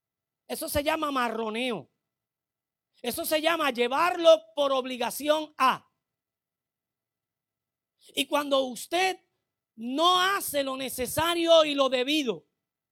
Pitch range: 210-300 Hz